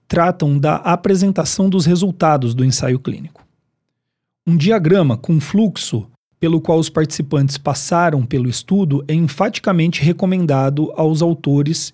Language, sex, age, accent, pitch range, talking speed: Portuguese, male, 40-59, Brazilian, 140-180 Hz, 120 wpm